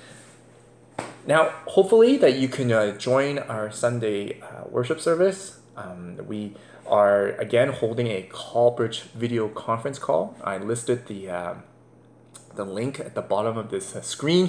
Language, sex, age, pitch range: English, male, 20-39, 110-160 Hz